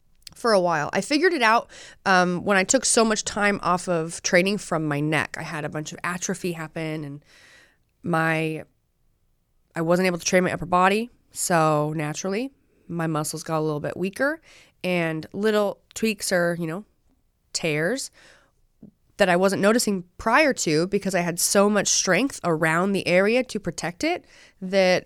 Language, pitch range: English, 160-200 Hz